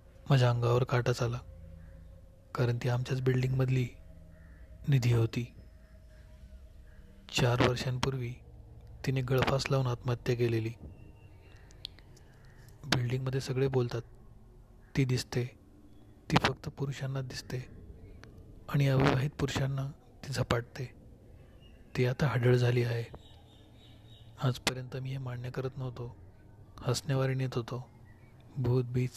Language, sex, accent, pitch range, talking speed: Marathi, male, native, 105-130 Hz, 85 wpm